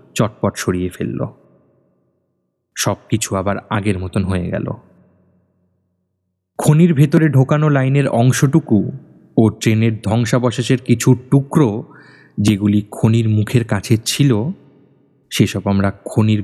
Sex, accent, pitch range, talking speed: male, native, 100-140 Hz, 95 wpm